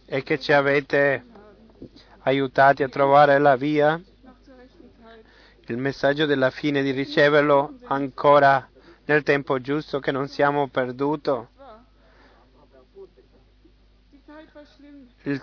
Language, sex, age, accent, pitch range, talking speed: Italian, male, 30-49, native, 140-160 Hz, 95 wpm